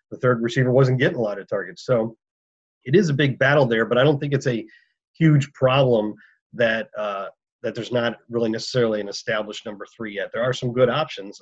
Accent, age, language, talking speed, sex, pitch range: American, 40-59, English, 215 wpm, male, 110-135 Hz